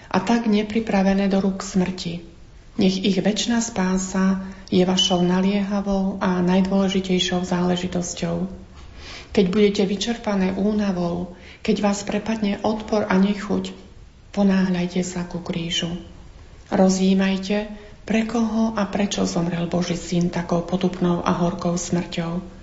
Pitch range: 175-200 Hz